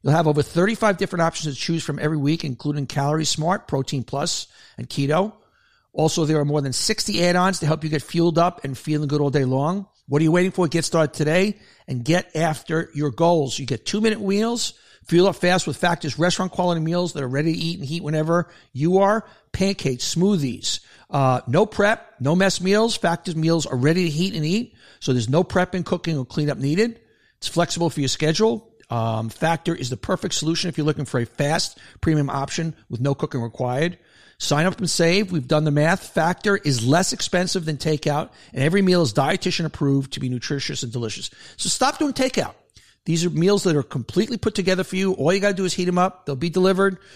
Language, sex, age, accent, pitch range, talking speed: English, male, 50-69, American, 145-185 Hz, 215 wpm